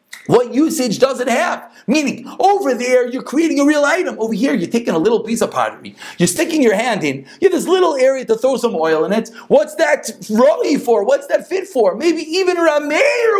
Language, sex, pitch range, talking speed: English, male, 215-285 Hz, 220 wpm